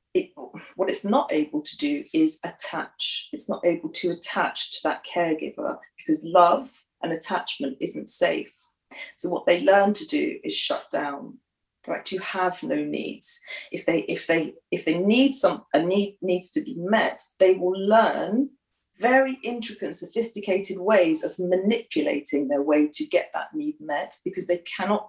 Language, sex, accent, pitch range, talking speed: English, female, British, 155-230 Hz, 165 wpm